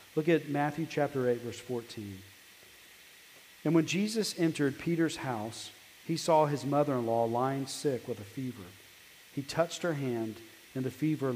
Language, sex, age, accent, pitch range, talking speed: English, male, 40-59, American, 120-155 Hz, 155 wpm